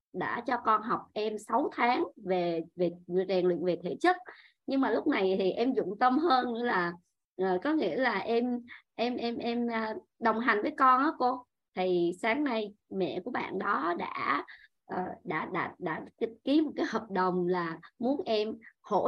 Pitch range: 190-300 Hz